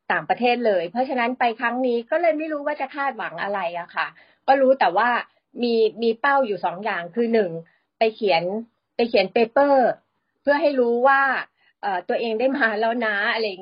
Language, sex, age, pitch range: Thai, female, 30-49, 210-265 Hz